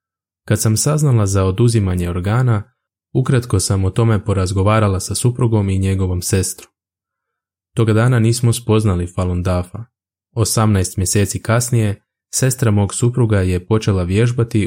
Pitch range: 95-115 Hz